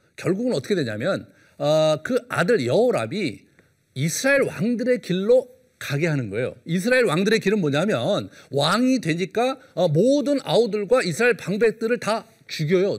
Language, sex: Korean, male